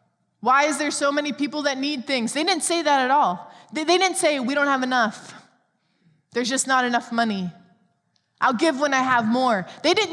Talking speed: 215 wpm